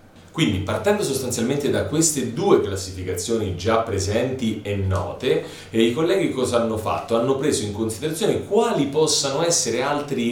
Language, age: Italian, 30-49